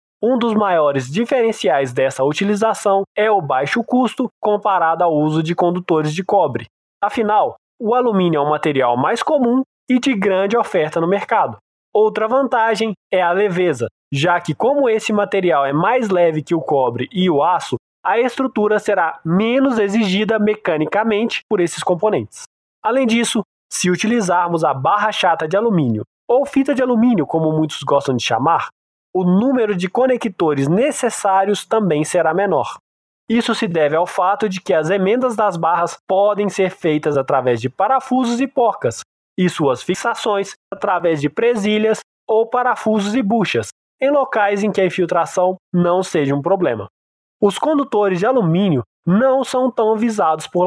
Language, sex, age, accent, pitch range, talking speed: Portuguese, male, 20-39, Brazilian, 165-230 Hz, 160 wpm